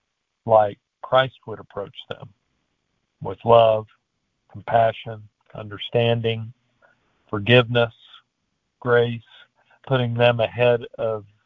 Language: English